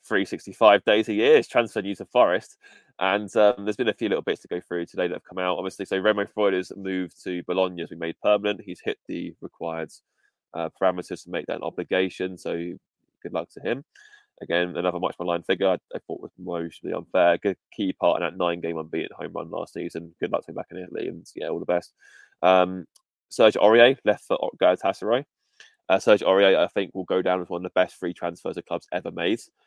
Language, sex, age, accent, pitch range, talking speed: English, male, 20-39, British, 85-100 Hz, 230 wpm